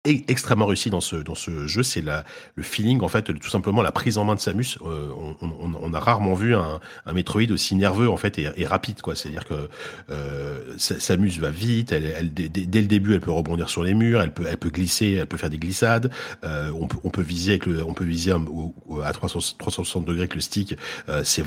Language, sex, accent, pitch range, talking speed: French, male, French, 80-105 Hz, 250 wpm